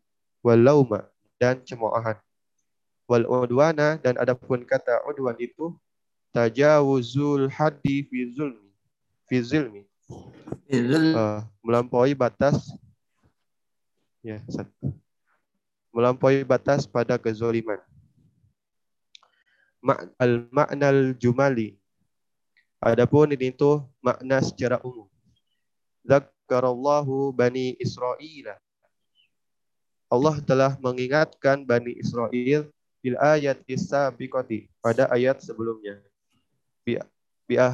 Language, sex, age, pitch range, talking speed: Indonesian, male, 20-39, 120-140 Hz, 75 wpm